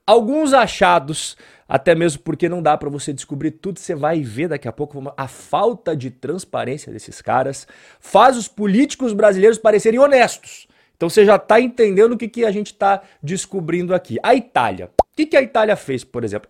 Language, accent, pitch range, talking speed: Portuguese, Brazilian, 145-215 Hz, 190 wpm